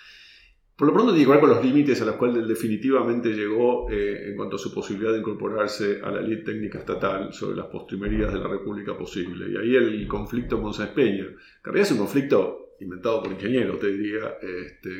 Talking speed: 210 wpm